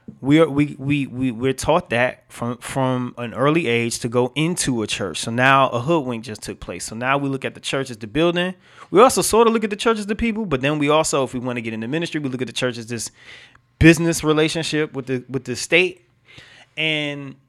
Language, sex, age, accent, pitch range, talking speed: English, male, 30-49, American, 120-140 Hz, 245 wpm